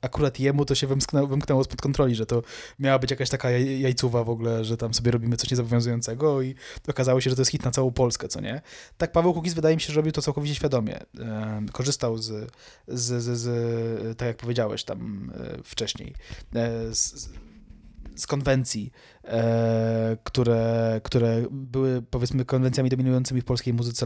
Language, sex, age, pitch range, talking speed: Polish, male, 20-39, 120-150 Hz, 175 wpm